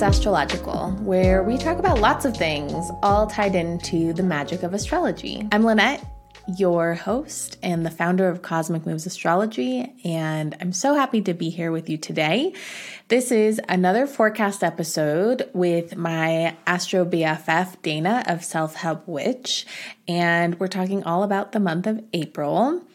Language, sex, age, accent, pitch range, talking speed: English, female, 20-39, American, 165-215 Hz, 155 wpm